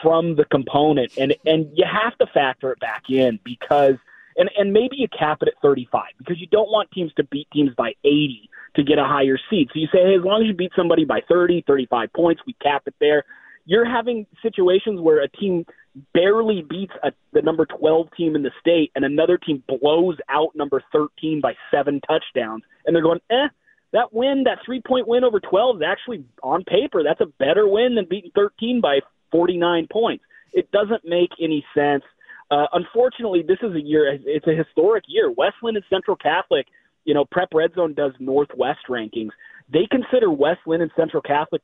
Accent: American